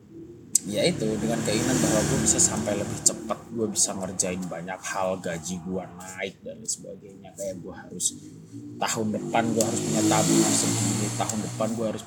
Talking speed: 165 wpm